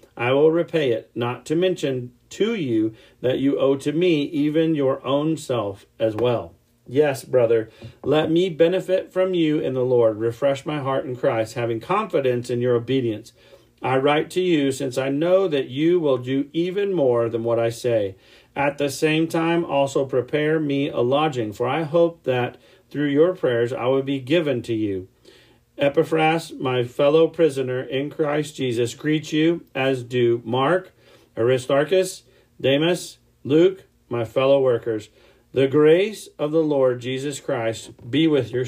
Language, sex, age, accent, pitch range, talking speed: English, male, 40-59, American, 120-150 Hz, 165 wpm